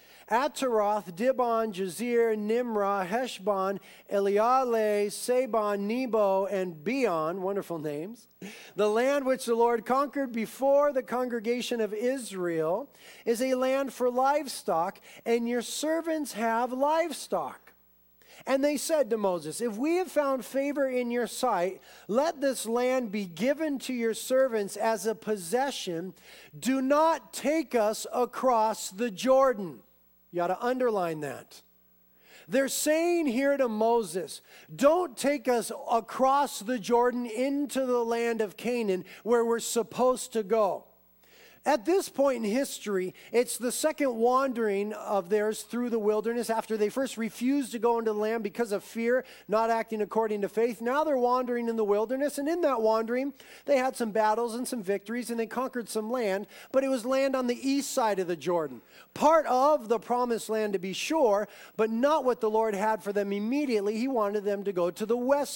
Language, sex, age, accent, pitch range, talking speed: English, male, 40-59, American, 210-260 Hz, 165 wpm